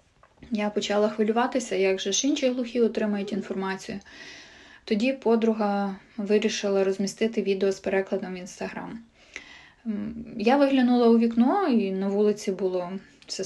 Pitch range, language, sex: 200-235 Hz, Ukrainian, female